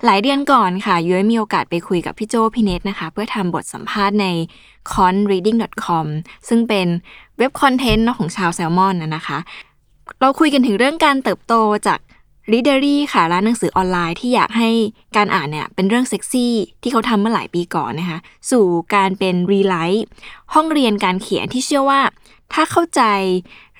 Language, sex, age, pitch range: Thai, female, 20-39, 185-255 Hz